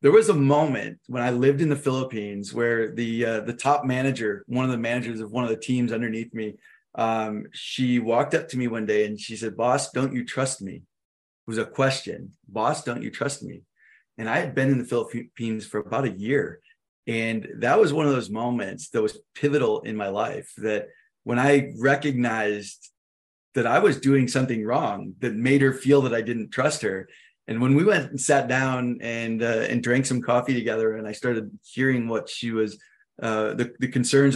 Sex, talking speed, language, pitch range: male, 210 wpm, English, 115-140 Hz